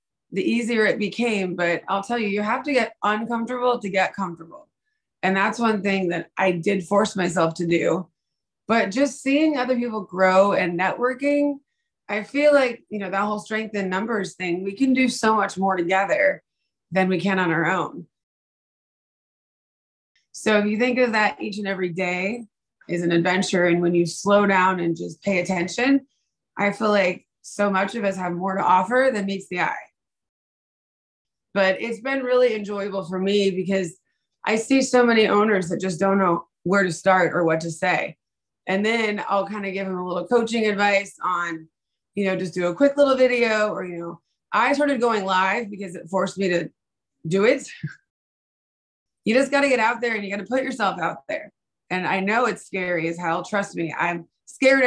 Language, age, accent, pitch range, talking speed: English, 20-39, American, 185-225 Hz, 195 wpm